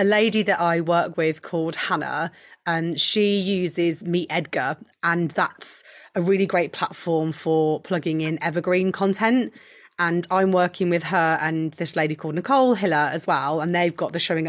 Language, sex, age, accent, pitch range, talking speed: English, female, 30-49, British, 160-180 Hz, 175 wpm